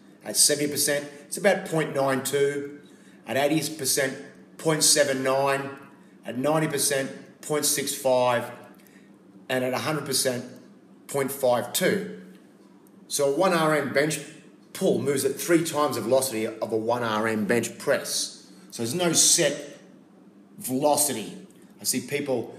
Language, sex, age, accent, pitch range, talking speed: English, male, 30-49, Australian, 125-150 Hz, 105 wpm